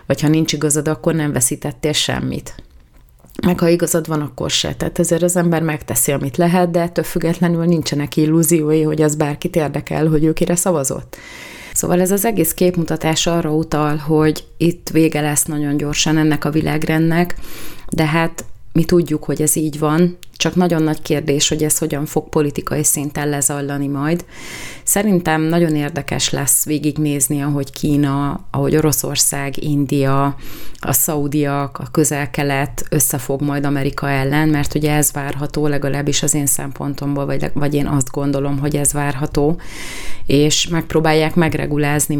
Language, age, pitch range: Hungarian, 30-49, 140-155 Hz